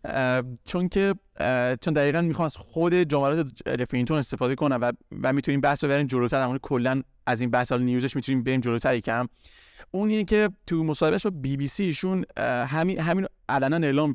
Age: 30-49